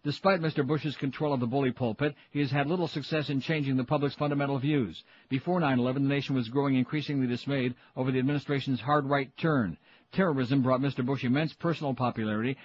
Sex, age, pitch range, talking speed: male, 60-79, 125-145 Hz, 190 wpm